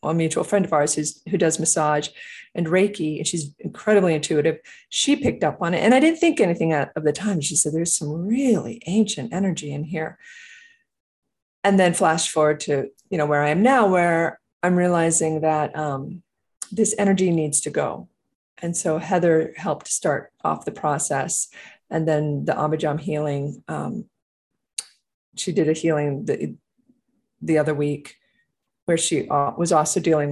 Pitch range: 155-200 Hz